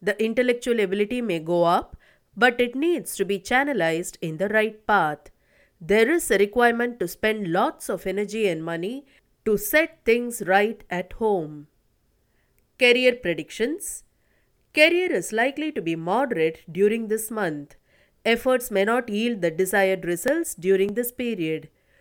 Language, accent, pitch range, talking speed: English, Indian, 185-255 Hz, 145 wpm